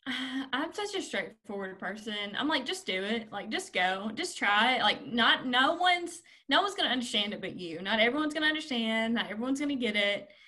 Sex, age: female, 20-39